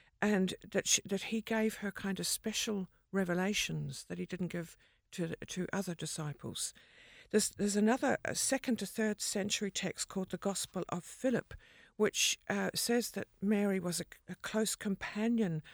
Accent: British